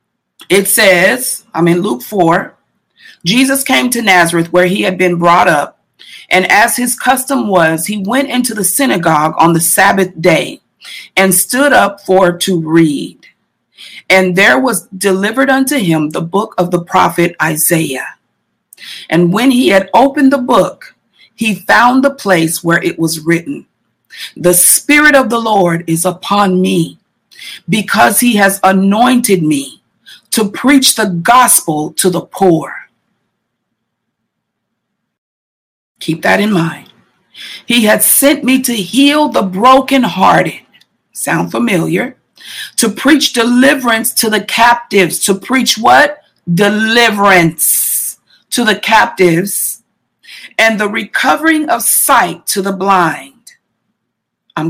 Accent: American